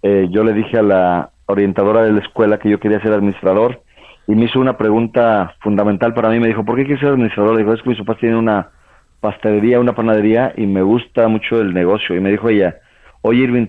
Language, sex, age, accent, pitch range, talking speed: Spanish, male, 40-59, Mexican, 100-115 Hz, 230 wpm